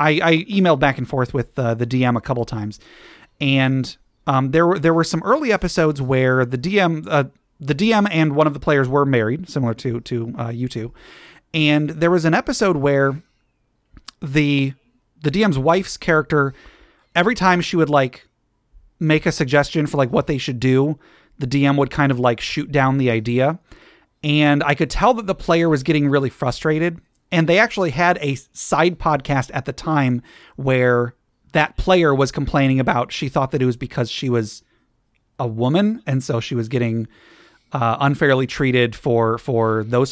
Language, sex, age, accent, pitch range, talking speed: English, male, 30-49, American, 125-160 Hz, 185 wpm